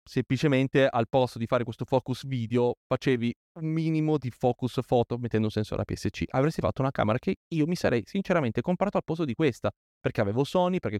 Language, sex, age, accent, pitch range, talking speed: Italian, male, 30-49, native, 115-155 Hz, 200 wpm